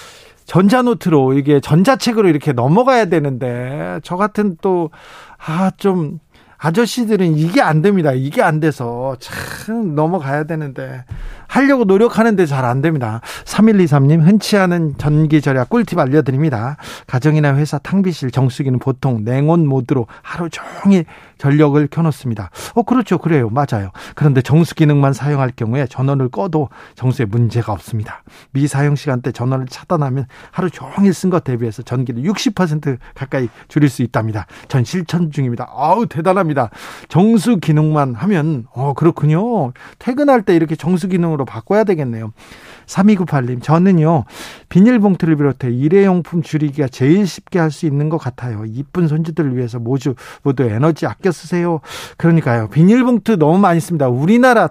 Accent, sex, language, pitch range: native, male, Korean, 135-185 Hz